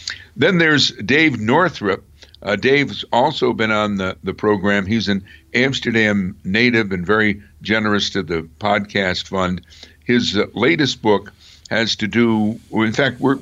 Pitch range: 90-115 Hz